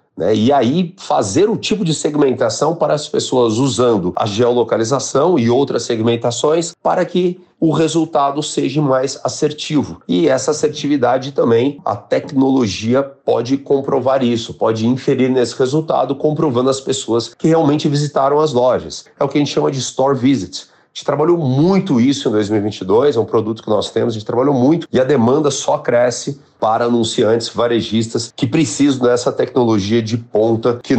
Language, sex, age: Portuguese, male, 40-59